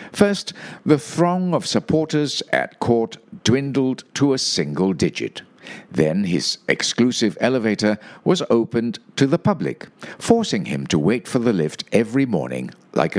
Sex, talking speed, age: male, 140 wpm, 60-79